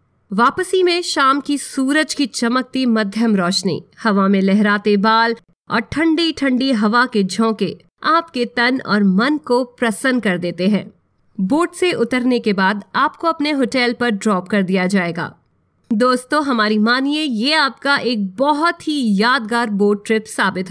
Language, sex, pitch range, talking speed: English, female, 210-295 Hz, 150 wpm